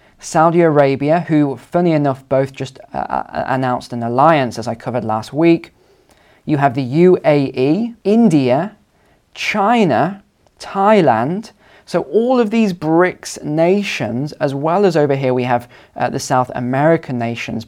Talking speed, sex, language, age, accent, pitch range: 140 wpm, male, English, 20-39, British, 125-165 Hz